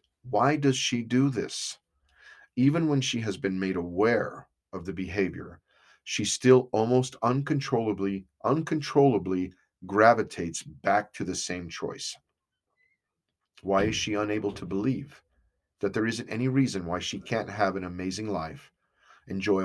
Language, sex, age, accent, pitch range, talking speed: English, male, 40-59, American, 95-120 Hz, 135 wpm